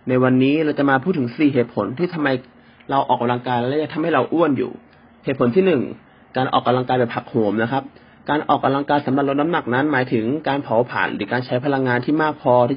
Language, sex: Thai, male